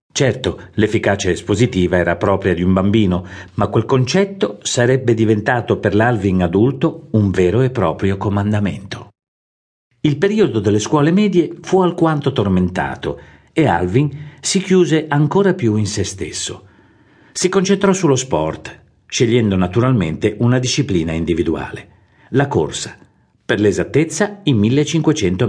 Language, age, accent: Italian, 50-69, native